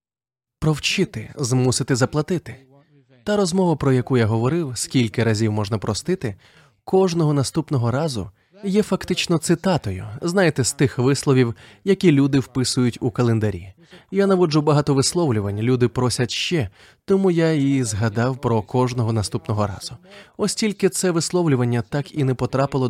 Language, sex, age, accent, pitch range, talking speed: Ukrainian, male, 20-39, native, 120-165 Hz, 130 wpm